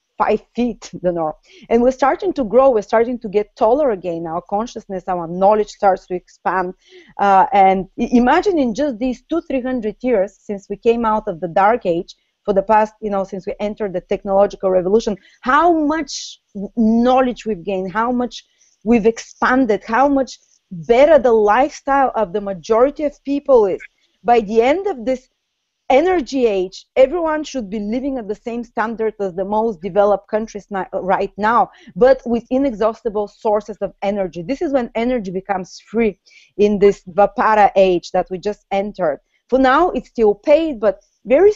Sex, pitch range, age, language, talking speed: female, 195-255 Hz, 30-49, English, 175 wpm